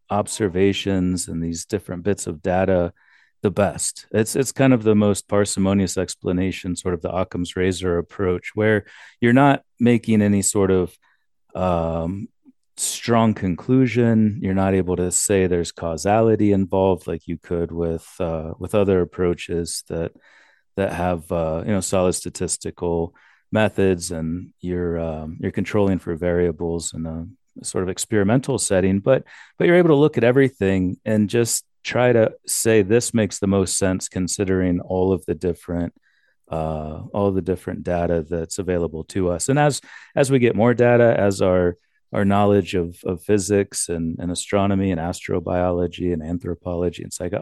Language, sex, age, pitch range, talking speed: English, male, 40-59, 85-105 Hz, 160 wpm